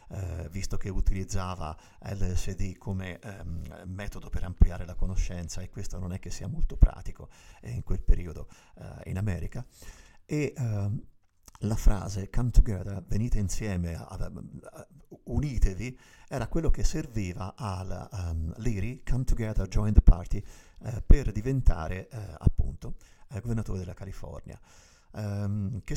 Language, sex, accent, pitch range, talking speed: Italian, male, native, 90-110 Hz, 145 wpm